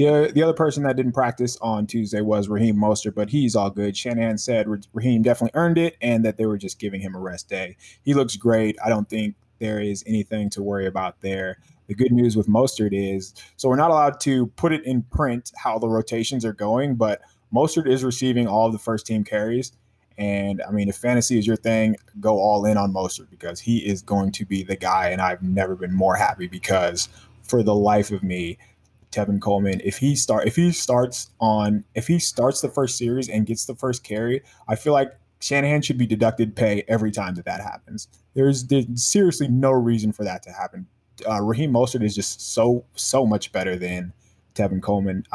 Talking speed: 210 wpm